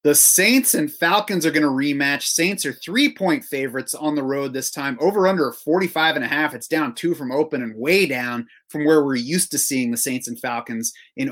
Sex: male